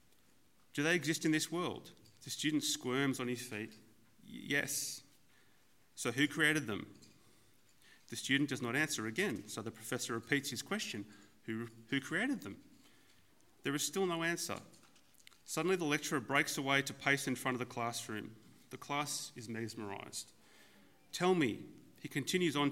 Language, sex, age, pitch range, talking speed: English, male, 30-49, 115-150 Hz, 160 wpm